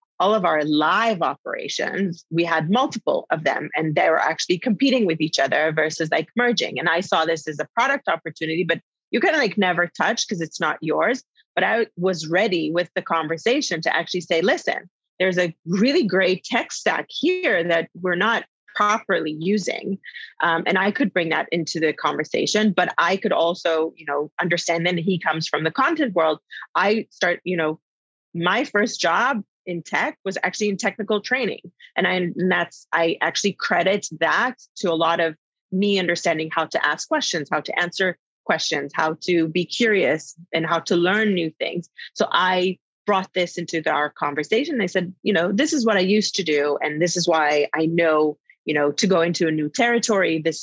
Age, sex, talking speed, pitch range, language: 30-49, female, 195 wpm, 160-205 Hz, English